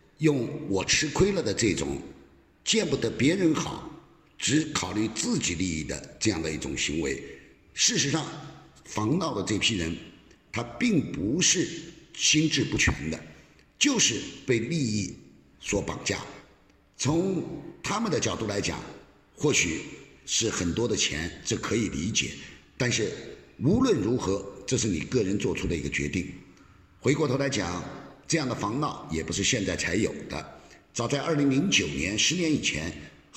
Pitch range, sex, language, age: 90-155 Hz, male, Chinese, 50-69